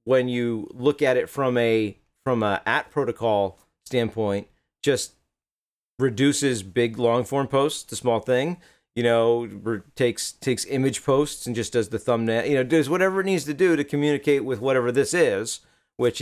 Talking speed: 175 wpm